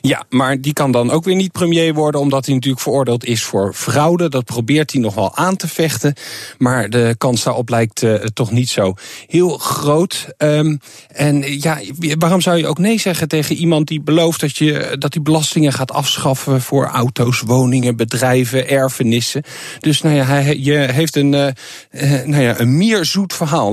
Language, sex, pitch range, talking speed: Dutch, male, 115-155 Hz, 190 wpm